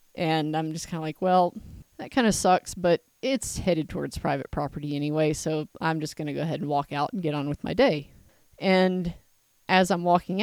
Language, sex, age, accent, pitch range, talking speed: English, female, 30-49, American, 155-190 Hz, 220 wpm